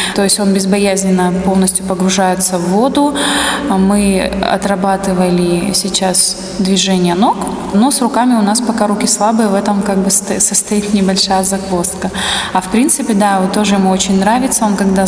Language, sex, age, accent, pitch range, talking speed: Russian, female, 20-39, native, 190-215 Hz, 150 wpm